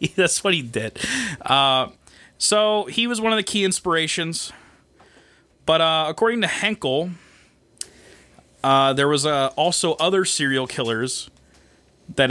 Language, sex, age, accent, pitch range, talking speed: English, male, 30-49, American, 125-180 Hz, 130 wpm